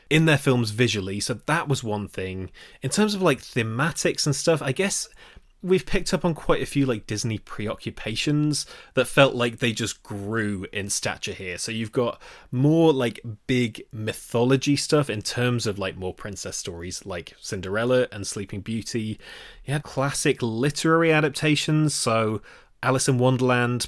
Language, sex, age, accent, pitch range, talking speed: English, male, 20-39, British, 105-140 Hz, 165 wpm